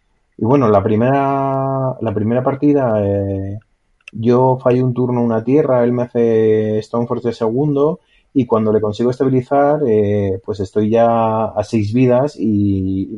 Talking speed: 155 wpm